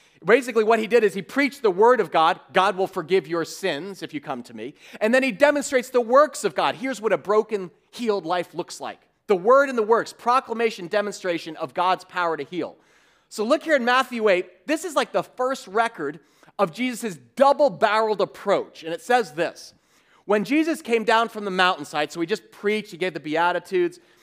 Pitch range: 185-255 Hz